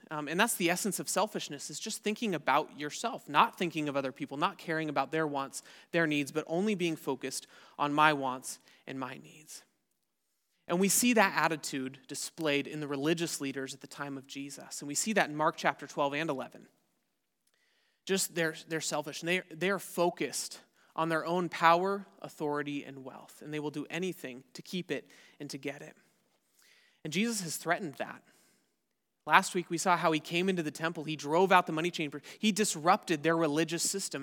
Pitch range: 145-175 Hz